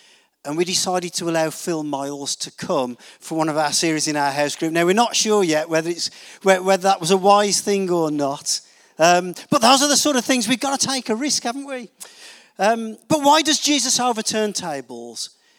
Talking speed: 215 wpm